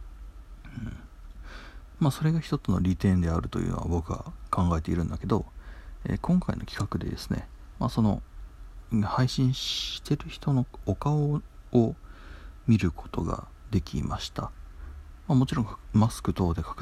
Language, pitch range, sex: Japanese, 75-105 Hz, male